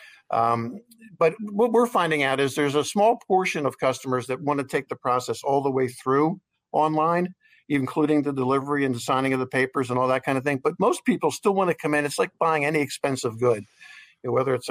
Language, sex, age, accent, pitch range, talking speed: English, male, 50-69, American, 125-155 Hz, 235 wpm